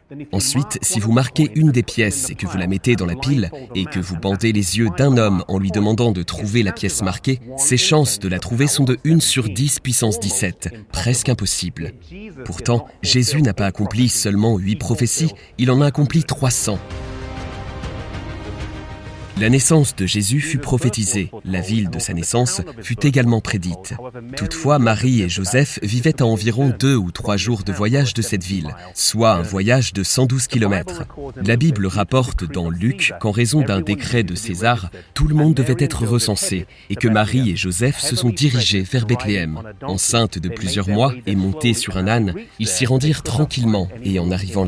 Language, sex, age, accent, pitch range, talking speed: French, male, 30-49, French, 95-130 Hz, 185 wpm